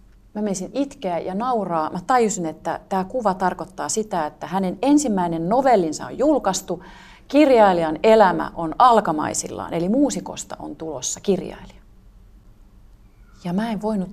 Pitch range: 160-215 Hz